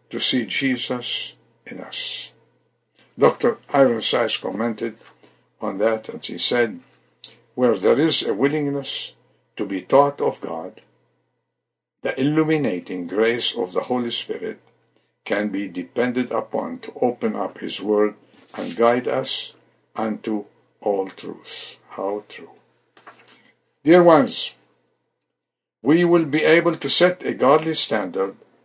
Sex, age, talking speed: male, 60-79, 120 wpm